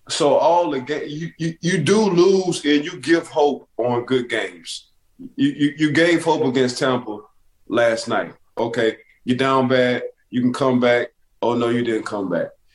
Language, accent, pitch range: English, American, 120-140 Hz